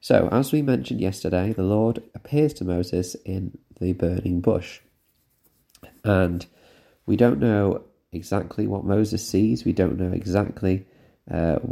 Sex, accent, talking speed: male, British, 140 wpm